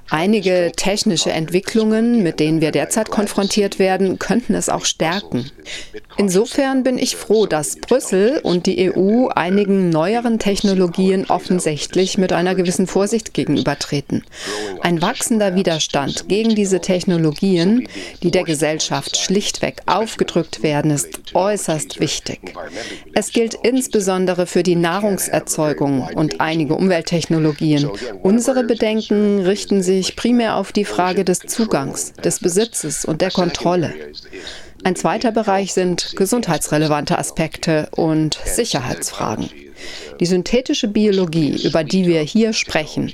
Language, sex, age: German, female, 40-59